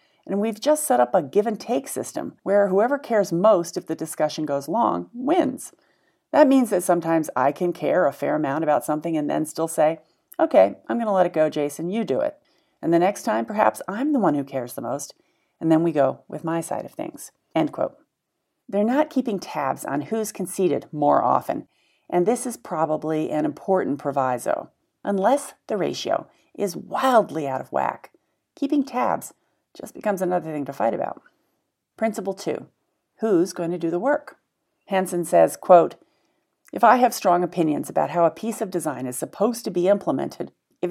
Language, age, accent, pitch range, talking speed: English, 40-59, American, 165-225 Hz, 190 wpm